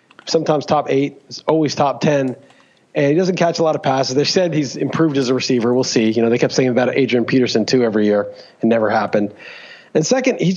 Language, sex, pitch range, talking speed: English, male, 135-170 Hz, 235 wpm